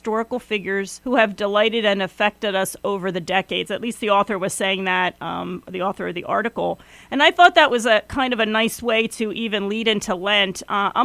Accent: American